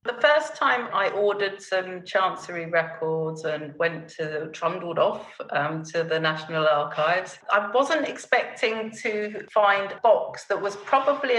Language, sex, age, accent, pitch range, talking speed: English, female, 40-59, British, 165-210 Hz, 150 wpm